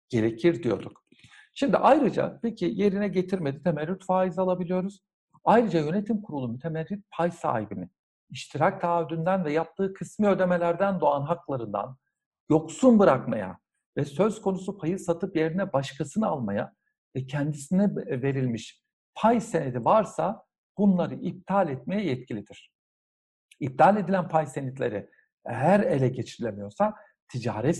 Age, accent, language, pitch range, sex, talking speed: 60-79, native, Turkish, 135-200 Hz, male, 110 wpm